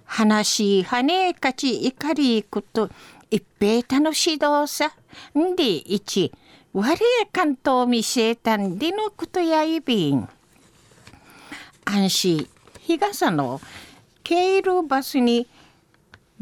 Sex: female